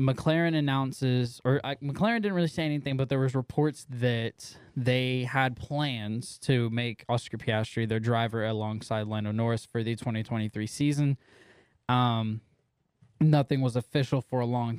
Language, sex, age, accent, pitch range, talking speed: English, male, 10-29, American, 115-135 Hz, 150 wpm